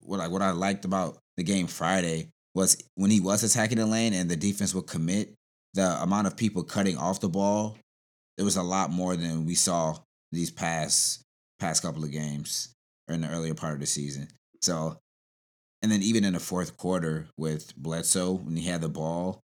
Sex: male